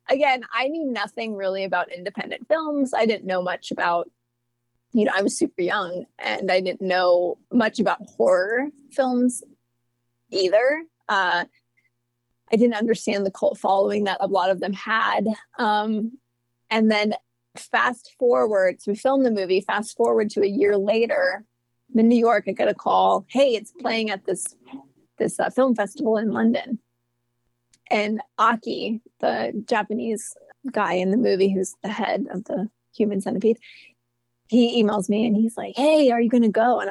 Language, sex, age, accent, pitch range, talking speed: English, female, 30-49, American, 185-245 Hz, 165 wpm